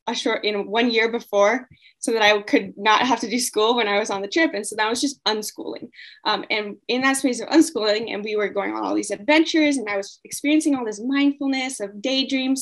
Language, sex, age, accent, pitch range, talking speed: English, female, 10-29, American, 210-275 Hz, 240 wpm